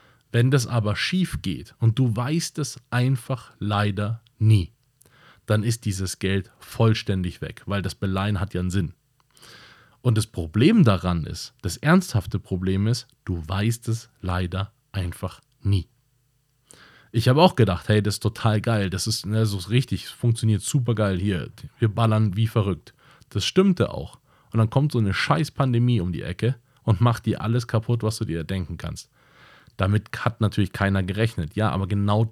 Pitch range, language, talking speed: 100-125 Hz, German, 175 wpm